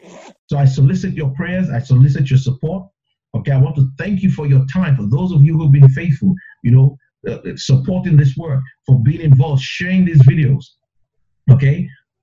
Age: 50-69